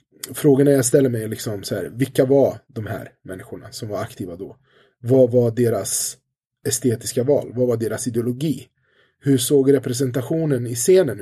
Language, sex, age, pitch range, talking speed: English, male, 20-39, 120-140 Hz, 155 wpm